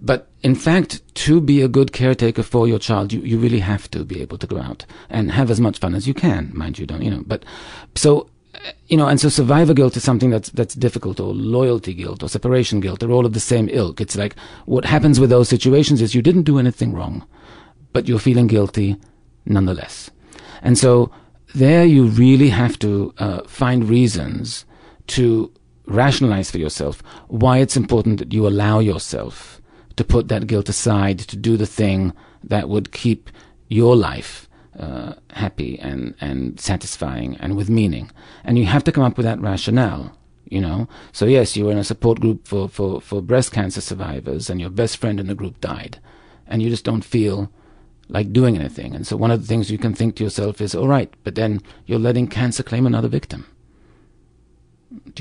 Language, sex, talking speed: English, male, 200 wpm